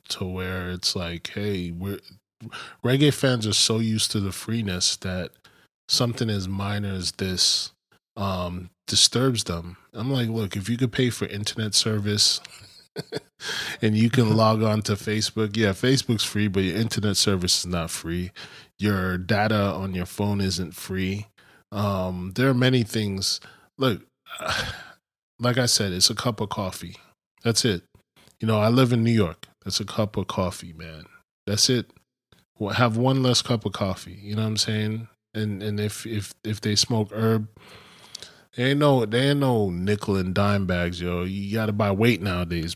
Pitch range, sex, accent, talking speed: 95-115 Hz, male, American, 175 wpm